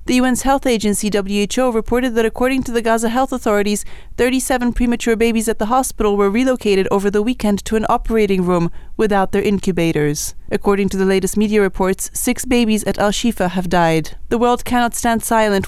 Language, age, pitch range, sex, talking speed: English, 30-49, 195-235 Hz, female, 185 wpm